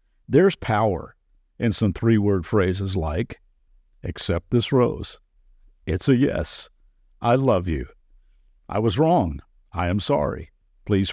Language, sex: English, male